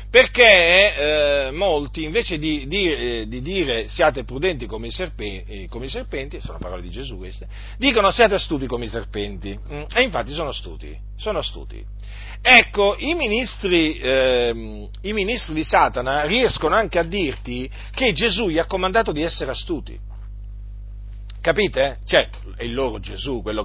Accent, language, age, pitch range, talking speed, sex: native, Italian, 40-59, 105-170 Hz, 155 wpm, male